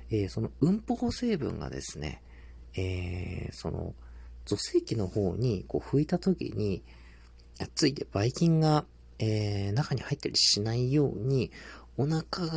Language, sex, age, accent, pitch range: Japanese, male, 40-59, native, 85-135 Hz